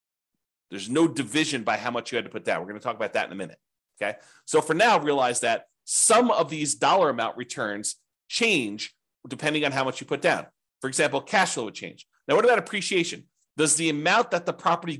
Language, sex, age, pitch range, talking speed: English, male, 40-59, 135-175 Hz, 225 wpm